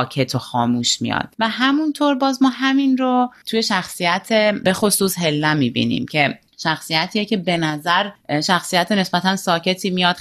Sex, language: female, Persian